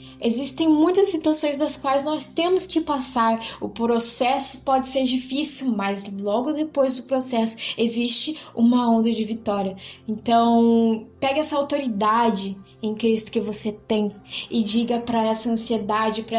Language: Portuguese